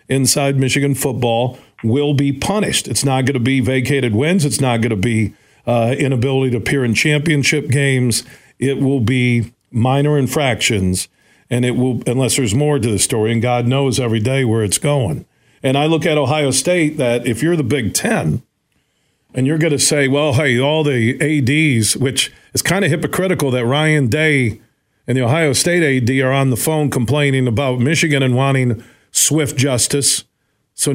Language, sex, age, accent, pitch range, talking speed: English, male, 50-69, American, 120-145 Hz, 185 wpm